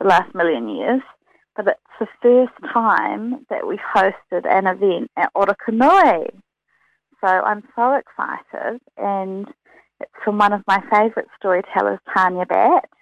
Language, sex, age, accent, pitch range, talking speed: English, female, 30-49, Australian, 190-245 Hz, 135 wpm